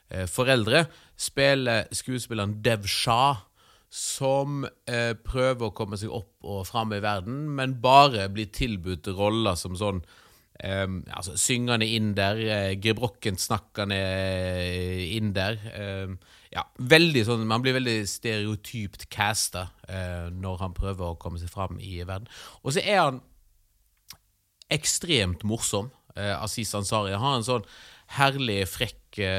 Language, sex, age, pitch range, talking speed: English, male, 30-49, 95-125 Hz, 140 wpm